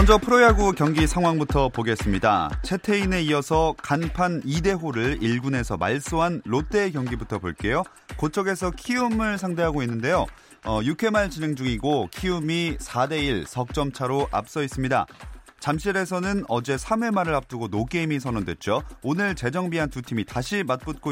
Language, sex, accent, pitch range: Korean, male, native, 125-185 Hz